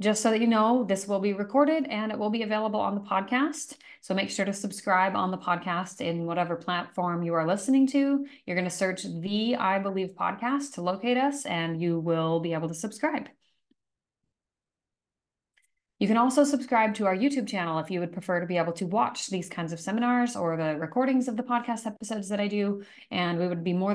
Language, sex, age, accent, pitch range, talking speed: English, female, 30-49, American, 175-225 Hz, 215 wpm